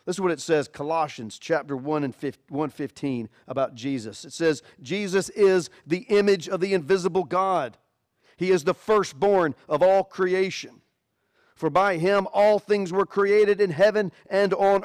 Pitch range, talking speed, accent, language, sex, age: 125-195 Hz, 160 wpm, American, English, male, 40-59